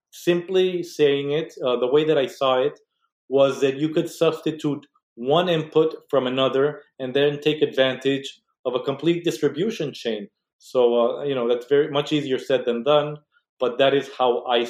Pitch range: 125-150 Hz